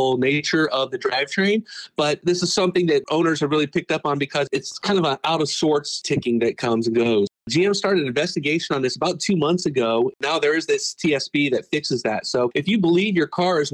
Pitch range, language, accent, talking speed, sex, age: 135-180 Hz, English, American, 225 wpm, male, 40-59